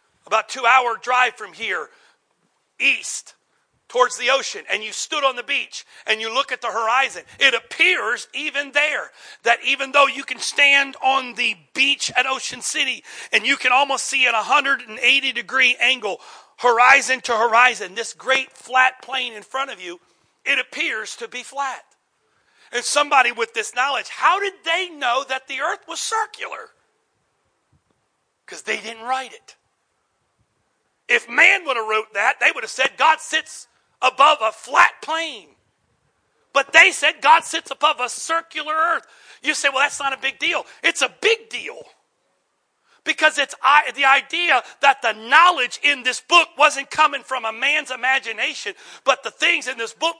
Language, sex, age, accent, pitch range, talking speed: English, male, 40-59, American, 245-300 Hz, 170 wpm